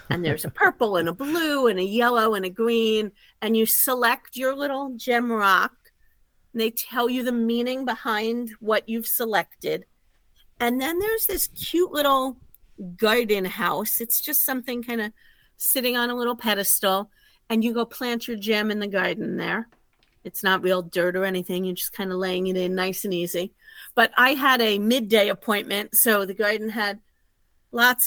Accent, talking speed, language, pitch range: American, 180 wpm, English, 200-260 Hz